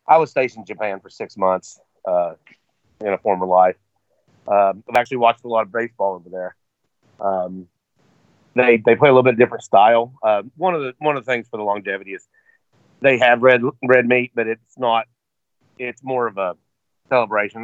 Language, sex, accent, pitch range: English, male, American, 105-130 Hz